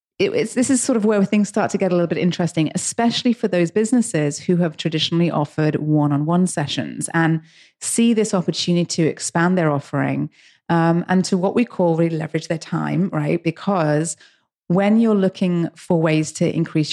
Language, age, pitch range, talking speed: English, 30-49, 150-180 Hz, 175 wpm